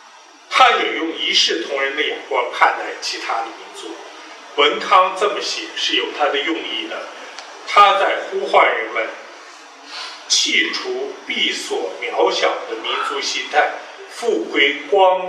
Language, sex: Chinese, male